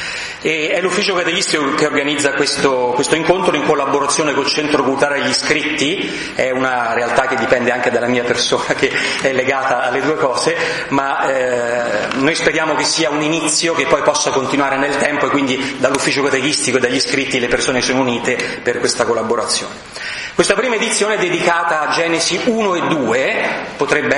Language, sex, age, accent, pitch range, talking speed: Italian, male, 30-49, native, 140-195 Hz, 175 wpm